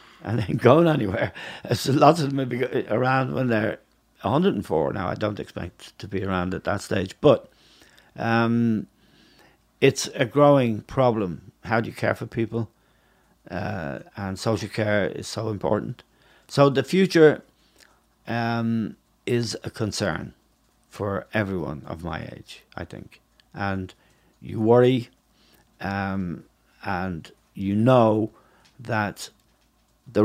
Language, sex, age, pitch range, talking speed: English, male, 60-79, 100-125 Hz, 130 wpm